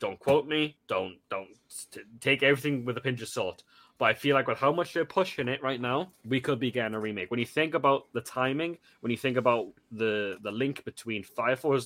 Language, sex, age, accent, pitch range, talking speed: English, male, 10-29, British, 110-150 Hz, 240 wpm